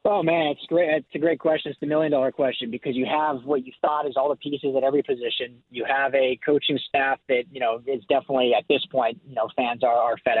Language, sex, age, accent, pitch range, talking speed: English, male, 30-49, American, 125-140 Hz, 260 wpm